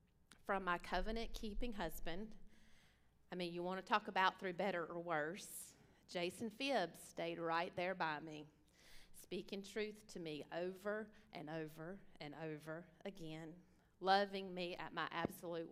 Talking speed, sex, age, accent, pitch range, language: 135 wpm, female, 30-49, American, 170-210 Hz, English